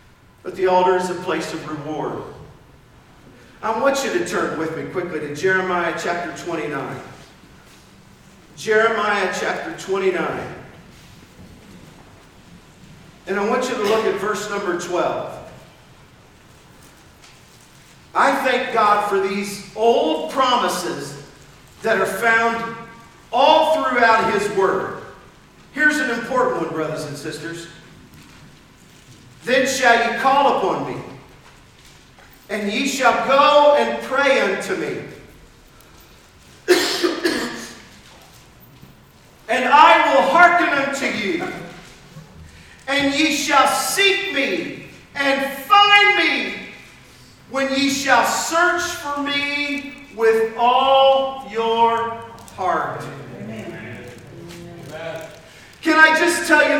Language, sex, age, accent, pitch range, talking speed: English, male, 50-69, American, 180-275 Hz, 100 wpm